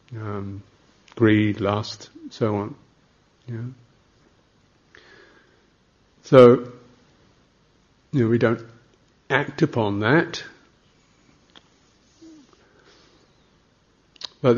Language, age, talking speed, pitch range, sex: English, 50-69, 60 wpm, 100-120 Hz, male